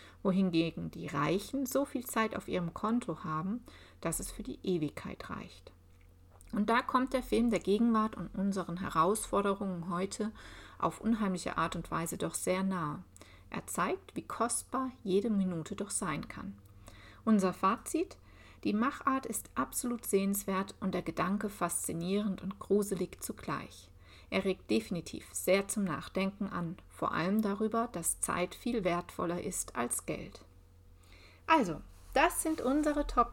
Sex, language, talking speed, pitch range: female, German, 145 wpm, 175-230 Hz